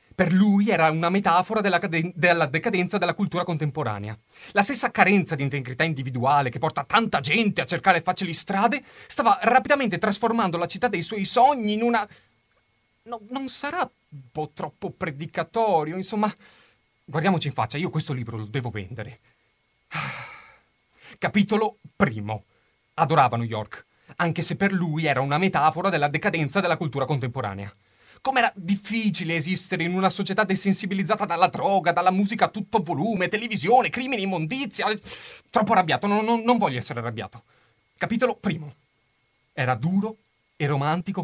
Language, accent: Italian, native